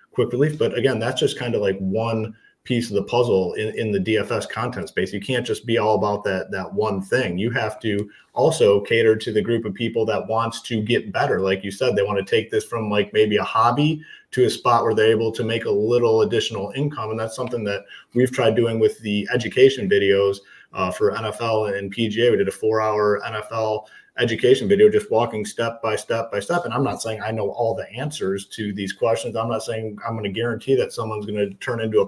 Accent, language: American, English